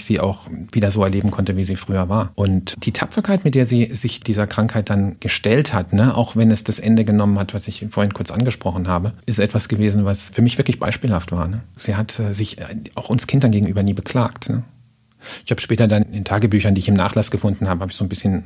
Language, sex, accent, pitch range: German, male, German, 95-115 Hz